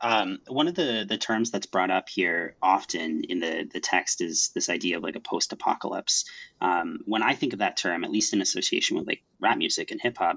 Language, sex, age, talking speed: English, male, 30-49, 225 wpm